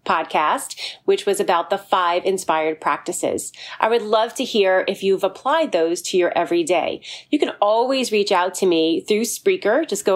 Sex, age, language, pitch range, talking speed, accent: female, 30-49, English, 185-240 Hz, 185 wpm, American